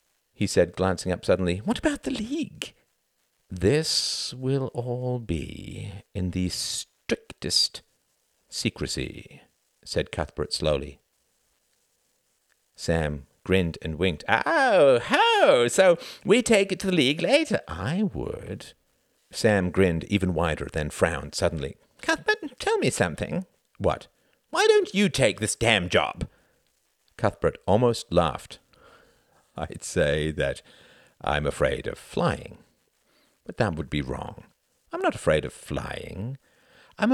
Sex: male